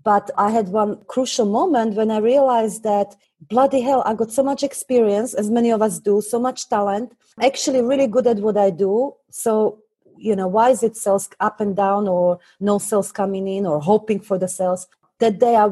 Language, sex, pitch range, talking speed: English, female, 190-230 Hz, 210 wpm